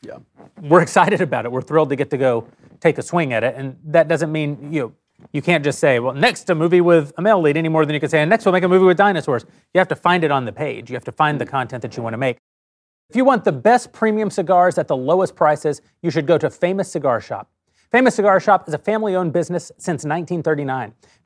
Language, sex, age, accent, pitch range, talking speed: English, male, 30-49, American, 150-195 Hz, 265 wpm